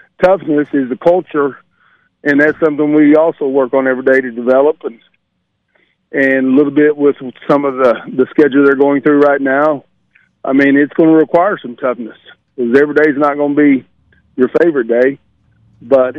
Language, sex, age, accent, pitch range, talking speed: English, male, 50-69, American, 125-145 Hz, 190 wpm